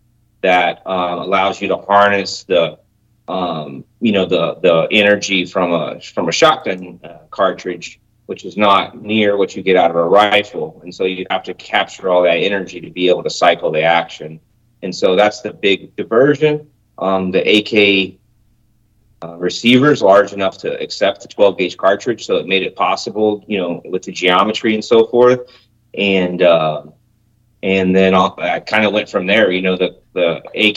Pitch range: 95-115 Hz